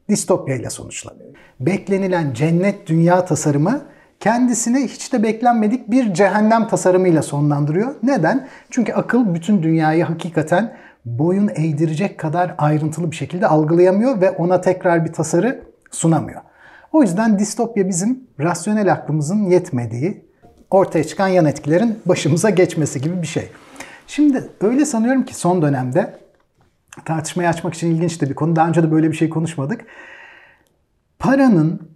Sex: male